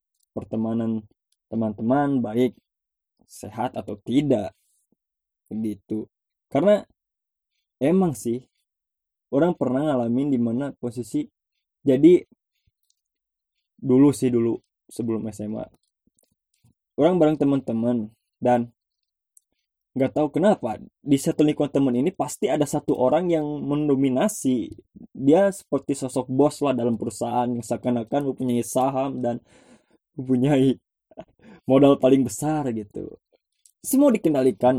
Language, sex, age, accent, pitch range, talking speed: Indonesian, male, 20-39, native, 115-145 Hz, 100 wpm